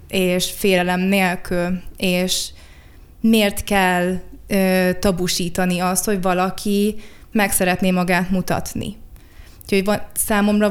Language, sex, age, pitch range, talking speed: Hungarian, female, 20-39, 185-210 Hz, 100 wpm